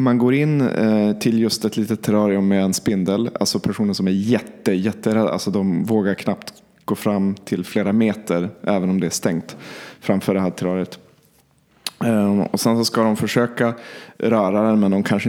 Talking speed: 175 wpm